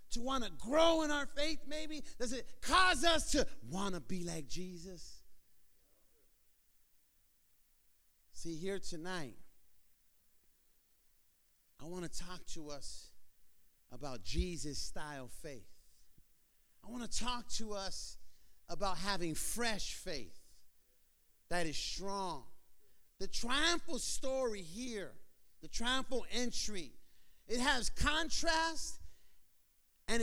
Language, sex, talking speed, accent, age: English, male, 105 wpm, American, 40-59